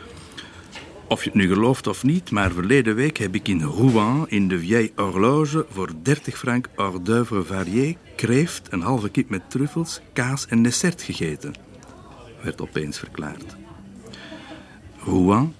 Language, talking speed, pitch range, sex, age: Dutch, 145 wpm, 85-115 Hz, male, 60-79